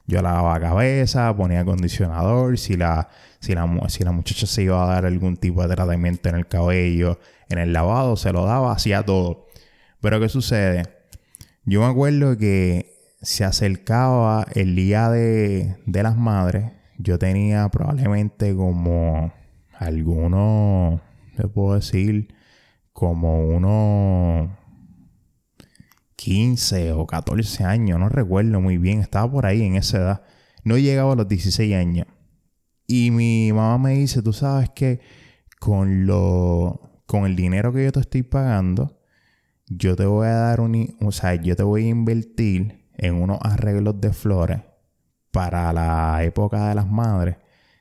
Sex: male